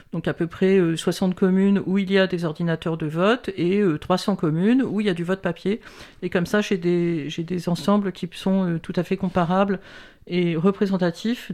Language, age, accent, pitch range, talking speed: French, 50-69, French, 180-225 Hz, 200 wpm